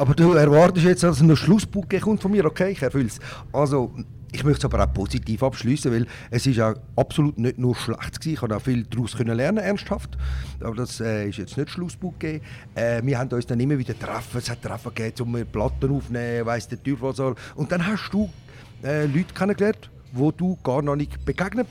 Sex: male